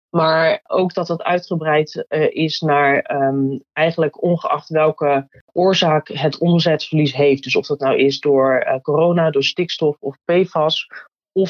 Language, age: Dutch, 30-49